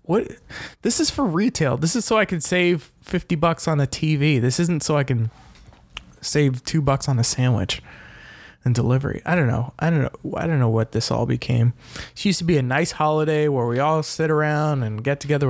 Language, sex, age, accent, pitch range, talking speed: English, male, 20-39, American, 120-155 Hz, 215 wpm